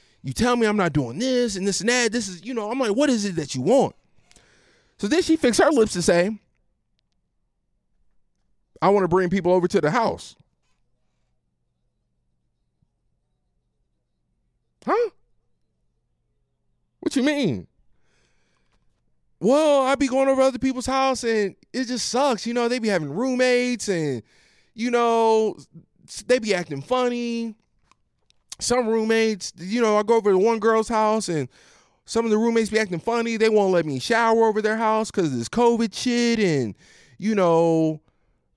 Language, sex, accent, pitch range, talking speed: English, male, American, 170-245 Hz, 160 wpm